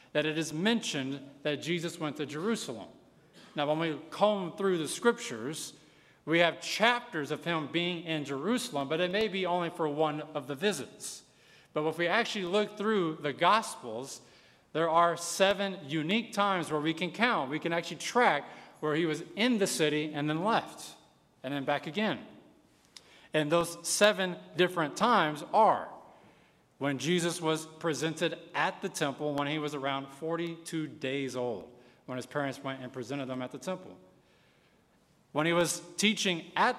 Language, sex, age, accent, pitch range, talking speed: English, male, 40-59, American, 150-190 Hz, 170 wpm